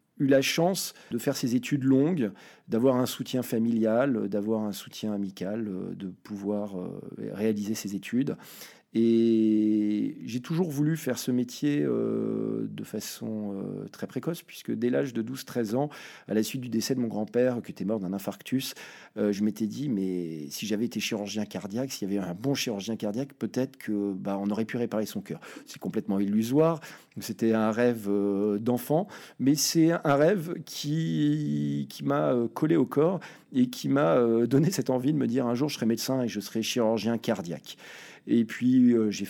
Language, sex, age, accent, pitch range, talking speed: French, male, 40-59, French, 105-130 Hz, 185 wpm